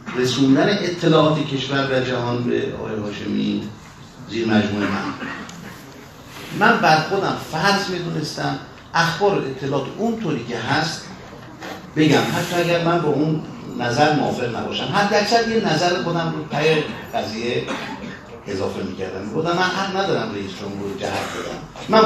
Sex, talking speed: male, 140 wpm